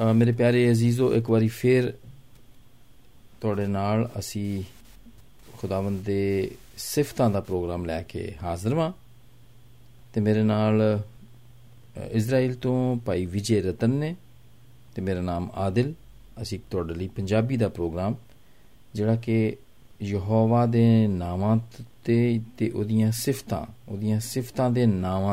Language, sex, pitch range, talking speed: Hindi, male, 100-125 Hz, 100 wpm